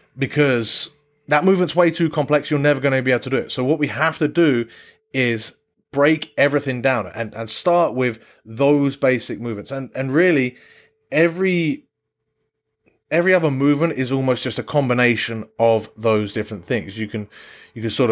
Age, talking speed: 30-49, 175 wpm